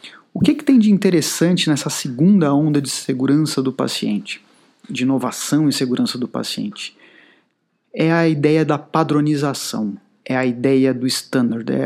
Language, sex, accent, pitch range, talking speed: Portuguese, male, Brazilian, 135-180 Hz, 145 wpm